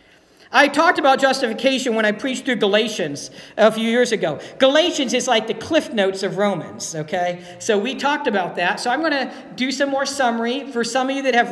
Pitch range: 205-270 Hz